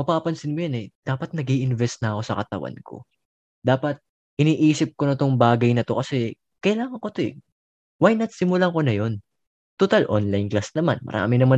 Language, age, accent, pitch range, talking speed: Filipino, 20-39, native, 110-150 Hz, 180 wpm